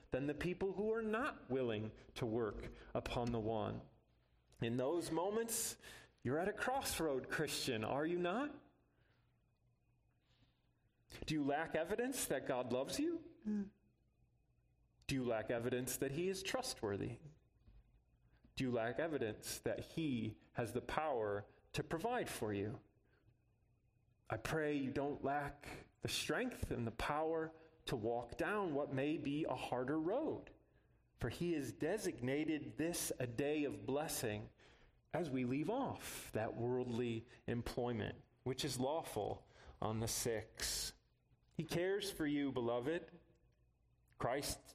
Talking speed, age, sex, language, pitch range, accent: 135 wpm, 30-49, male, English, 115-150 Hz, American